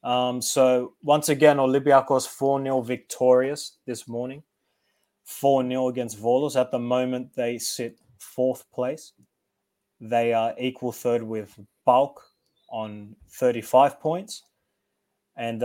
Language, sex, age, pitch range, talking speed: English, male, 20-39, 115-130 Hz, 110 wpm